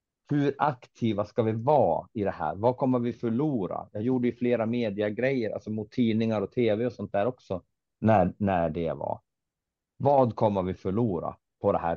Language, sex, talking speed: Swedish, male, 185 wpm